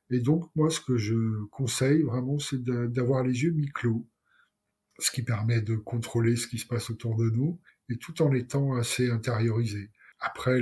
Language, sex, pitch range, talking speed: French, male, 115-125 Hz, 180 wpm